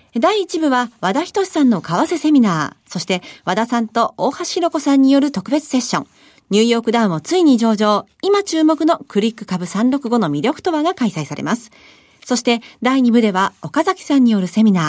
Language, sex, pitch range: Japanese, female, 200-305 Hz